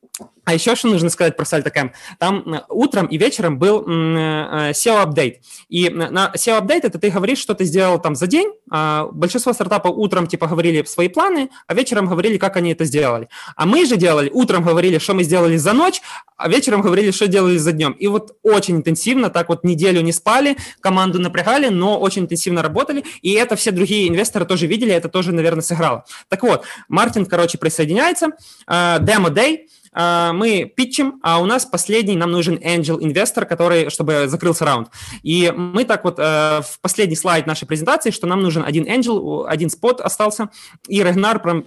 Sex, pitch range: male, 160-210 Hz